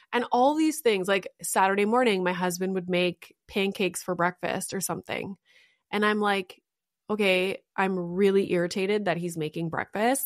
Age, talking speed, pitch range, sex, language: 20-39, 160 wpm, 180-220 Hz, female, English